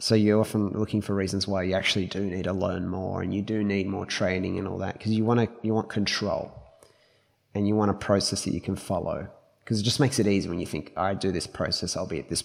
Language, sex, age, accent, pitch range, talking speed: English, male, 20-39, Australian, 95-115 Hz, 260 wpm